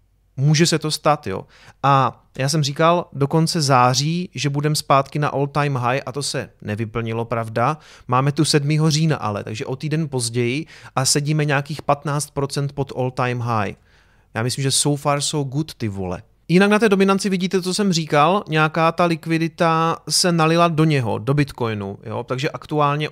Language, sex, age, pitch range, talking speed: Czech, male, 30-49, 125-150 Hz, 175 wpm